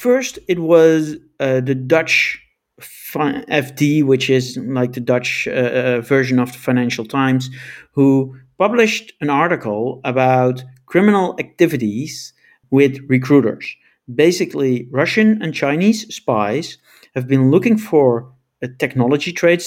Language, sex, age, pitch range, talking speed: English, male, 50-69, 125-160 Hz, 120 wpm